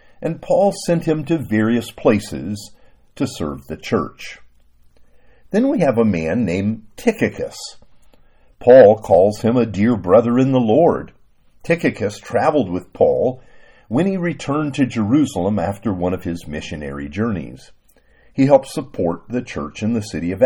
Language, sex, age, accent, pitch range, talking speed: English, male, 50-69, American, 90-145 Hz, 150 wpm